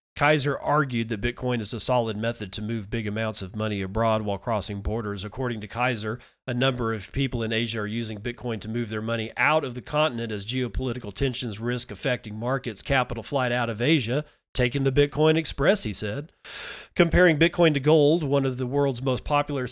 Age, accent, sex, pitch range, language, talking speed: 40-59, American, male, 110-140 Hz, English, 200 wpm